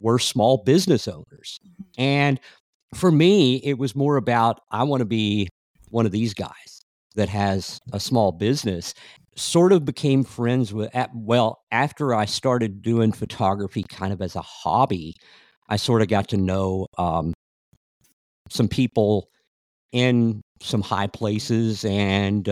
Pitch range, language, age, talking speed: 95-130 Hz, English, 50-69, 145 wpm